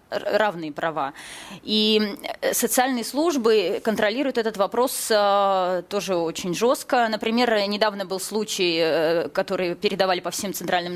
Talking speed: 110 wpm